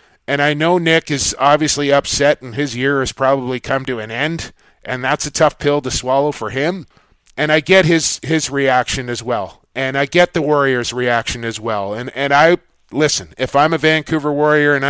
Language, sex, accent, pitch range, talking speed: English, male, American, 125-145 Hz, 205 wpm